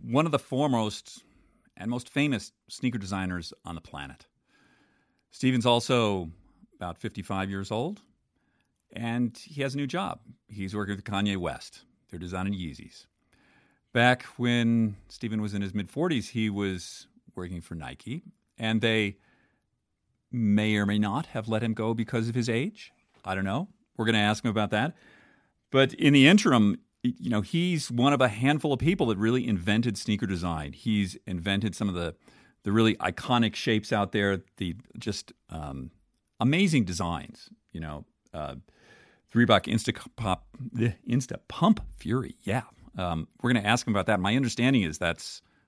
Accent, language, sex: American, English, male